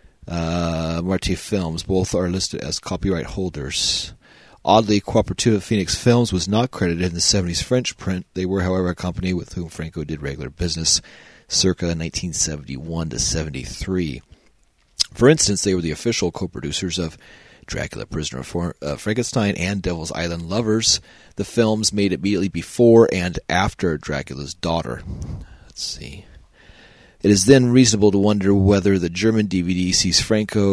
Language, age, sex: English, 40-59, male